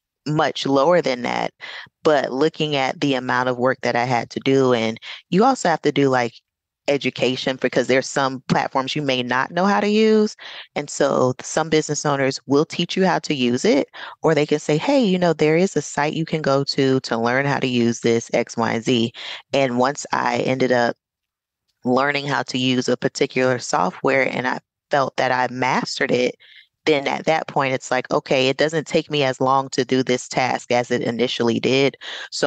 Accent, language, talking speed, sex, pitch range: American, English, 205 wpm, female, 125-145 Hz